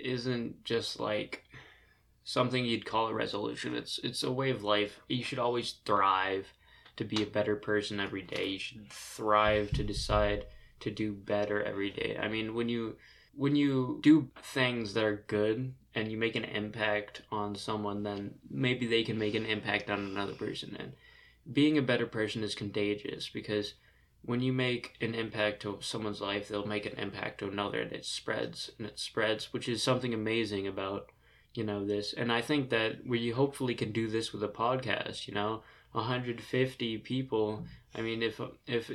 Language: English